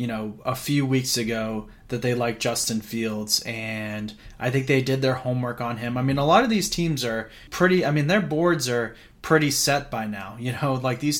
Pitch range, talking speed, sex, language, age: 125-150 Hz, 225 wpm, male, English, 20-39